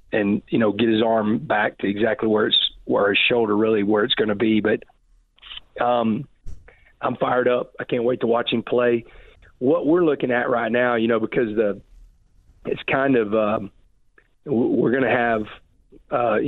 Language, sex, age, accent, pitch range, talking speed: English, male, 40-59, American, 110-125 Hz, 185 wpm